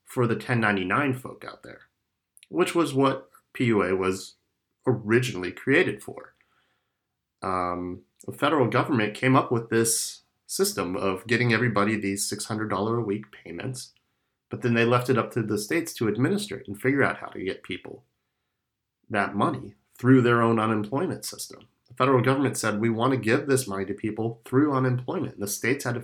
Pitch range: 110-130 Hz